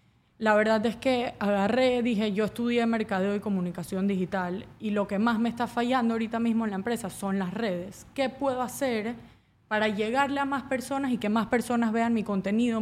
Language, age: Spanish, 20-39